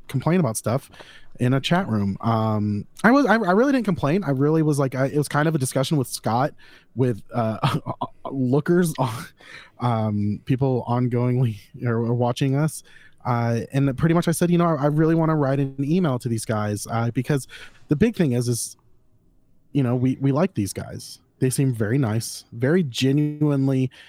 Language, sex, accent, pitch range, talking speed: English, male, American, 110-140 Hz, 190 wpm